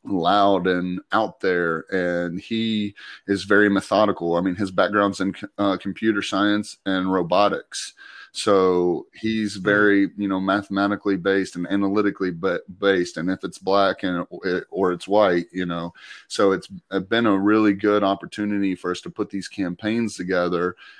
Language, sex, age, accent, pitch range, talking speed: English, male, 30-49, American, 90-100 Hz, 150 wpm